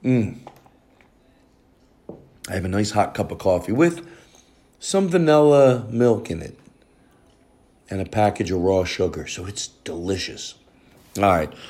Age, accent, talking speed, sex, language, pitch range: 40-59, American, 135 wpm, male, English, 90-110 Hz